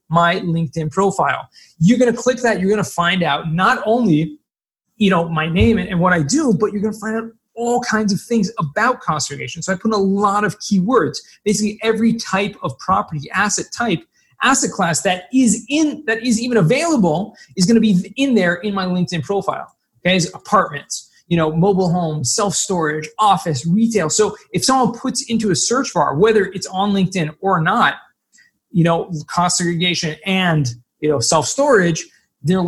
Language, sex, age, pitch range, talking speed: English, male, 30-49, 165-220 Hz, 180 wpm